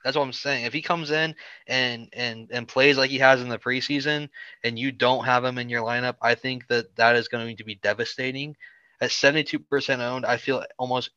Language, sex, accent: English, male, American